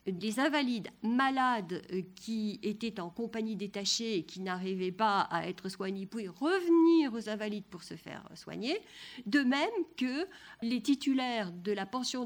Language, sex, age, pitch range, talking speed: French, female, 50-69, 210-305 Hz, 150 wpm